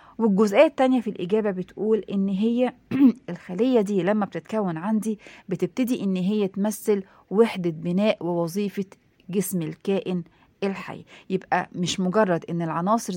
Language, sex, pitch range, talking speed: Arabic, female, 180-240 Hz, 125 wpm